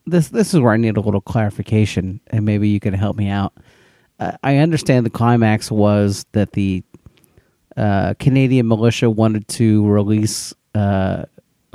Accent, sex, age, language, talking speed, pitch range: American, male, 40-59, English, 160 wpm, 100-120 Hz